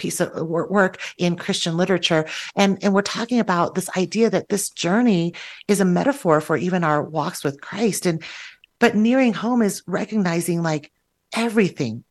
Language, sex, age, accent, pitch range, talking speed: English, female, 30-49, American, 150-200 Hz, 165 wpm